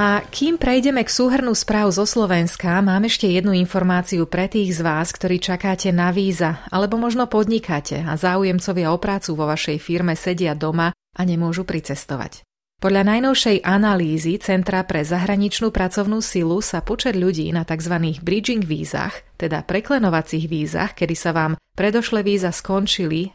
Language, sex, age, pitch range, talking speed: Slovak, female, 30-49, 165-205 Hz, 150 wpm